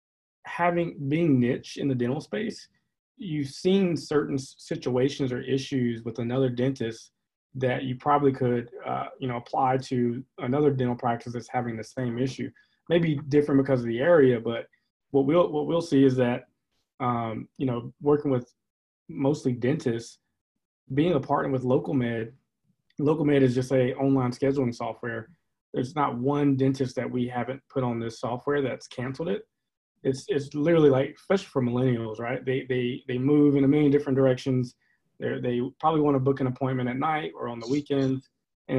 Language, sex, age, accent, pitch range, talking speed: English, male, 20-39, American, 125-145 Hz, 175 wpm